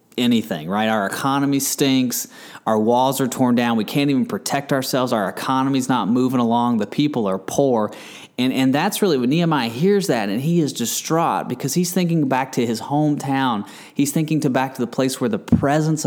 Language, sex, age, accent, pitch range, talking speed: English, male, 30-49, American, 115-150 Hz, 200 wpm